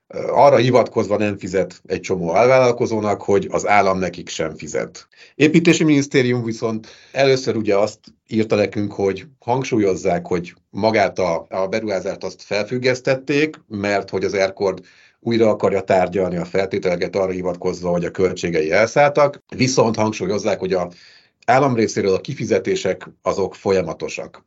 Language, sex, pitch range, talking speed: Hungarian, male, 100-130 Hz, 135 wpm